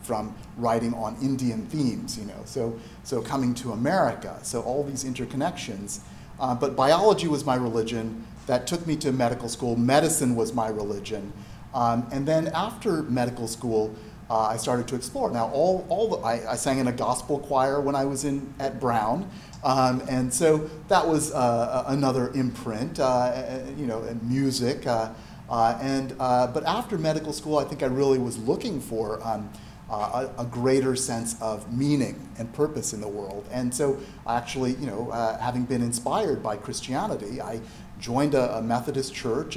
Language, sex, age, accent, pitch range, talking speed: English, male, 40-59, American, 115-145 Hz, 180 wpm